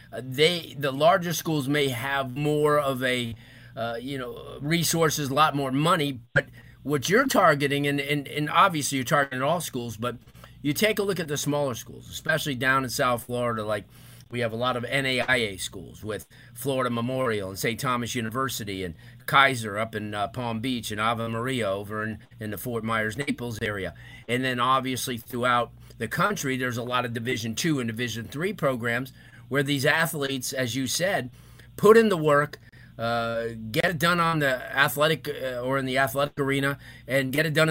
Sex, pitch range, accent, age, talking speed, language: male, 120-150 Hz, American, 30-49, 190 wpm, English